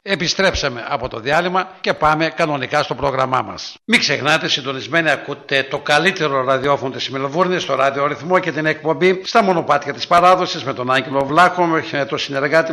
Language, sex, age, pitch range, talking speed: Greek, male, 60-79, 140-175 Hz, 175 wpm